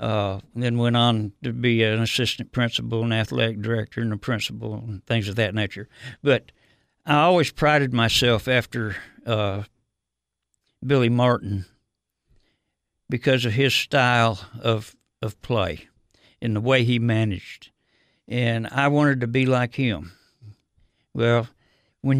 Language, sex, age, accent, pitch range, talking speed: English, male, 60-79, American, 110-130 Hz, 135 wpm